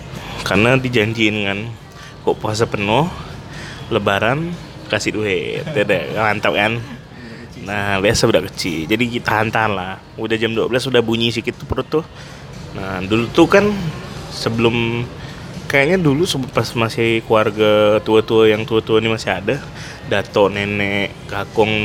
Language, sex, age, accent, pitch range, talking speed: Indonesian, male, 20-39, native, 110-140 Hz, 130 wpm